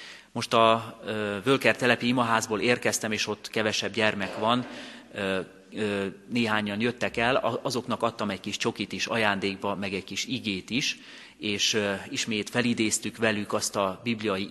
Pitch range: 95-120 Hz